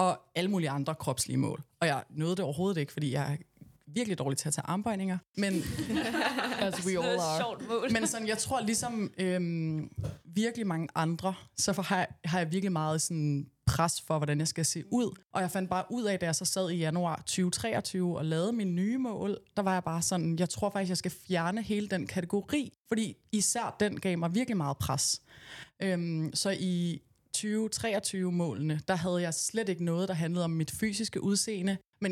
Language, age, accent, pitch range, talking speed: Danish, 20-39, native, 160-195 Hz, 195 wpm